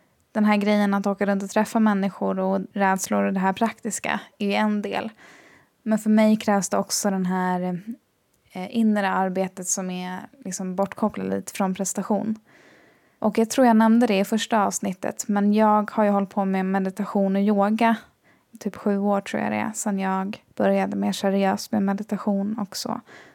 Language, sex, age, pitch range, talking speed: Swedish, female, 20-39, 195-215 Hz, 165 wpm